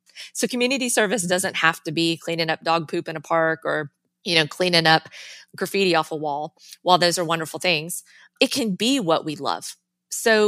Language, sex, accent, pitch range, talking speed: English, female, American, 165-235 Hz, 200 wpm